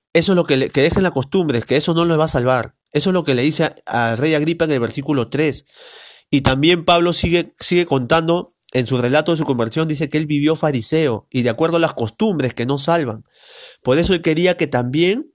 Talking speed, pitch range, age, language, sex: 240 wpm, 125-165 Hz, 40-59, Spanish, male